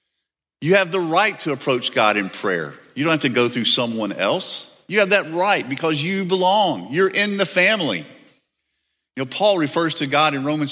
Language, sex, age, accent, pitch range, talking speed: English, male, 50-69, American, 130-190 Hz, 200 wpm